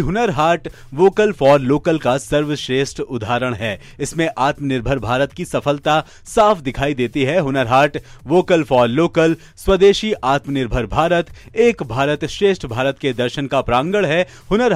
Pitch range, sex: 130-170 Hz, male